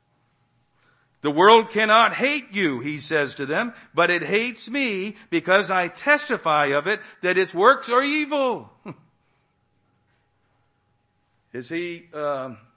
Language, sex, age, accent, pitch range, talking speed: English, male, 50-69, American, 130-175 Hz, 120 wpm